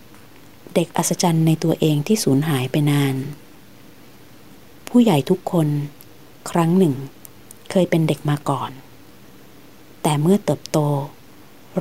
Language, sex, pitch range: Thai, female, 145-180 Hz